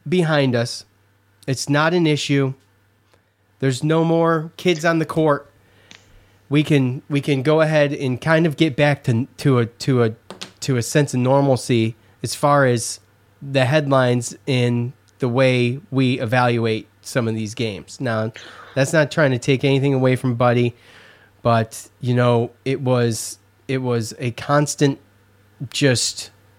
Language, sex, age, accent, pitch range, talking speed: English, male, 30-49, American, 110-145 Hz, 155 wpm